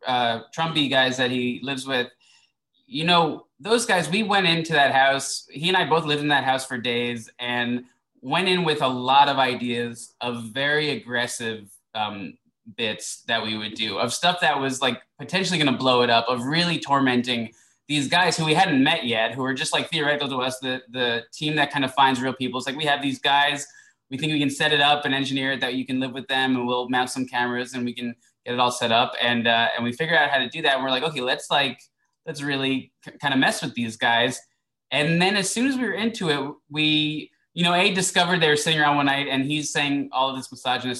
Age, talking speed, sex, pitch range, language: 20-39, 245 wpm, male, 125-155 Hz, English